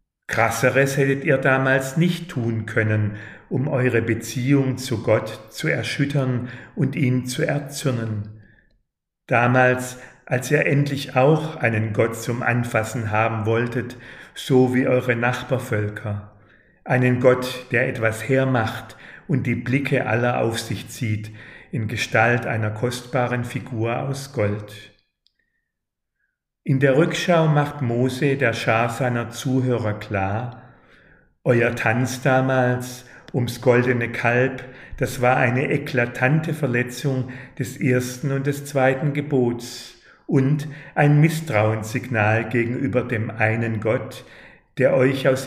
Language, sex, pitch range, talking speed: German, male, 115-135 Hz, 115 wpm